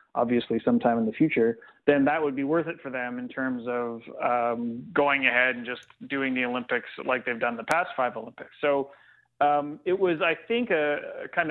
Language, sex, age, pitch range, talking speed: English, male, 30-49, 125-150 Hz, 210 wpm